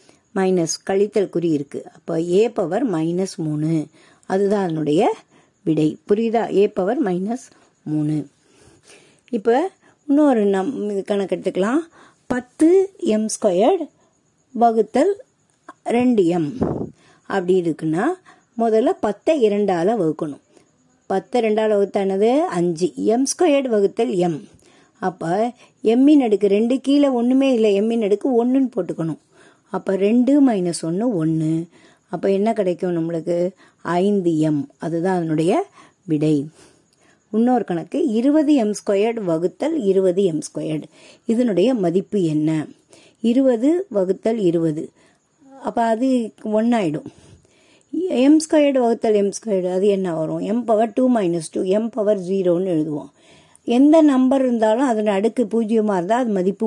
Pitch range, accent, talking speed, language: 175-245 Hz, native, 110 wpm, Tamil